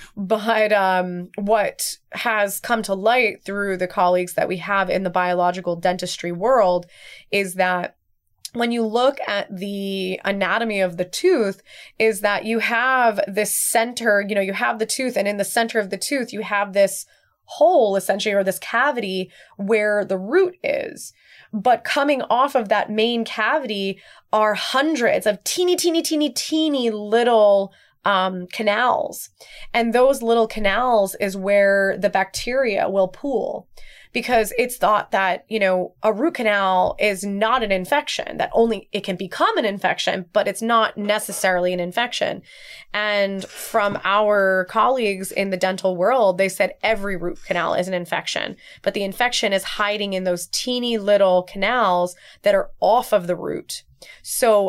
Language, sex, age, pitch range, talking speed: English, female, 20-39, 195-235 Hz, 160 wpm